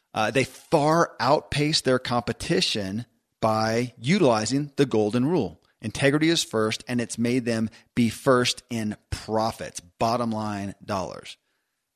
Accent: American